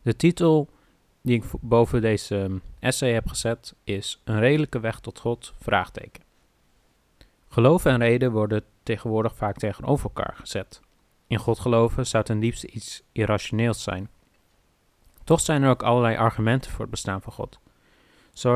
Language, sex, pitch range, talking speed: English, male, 105-125 Hz, 150 wpm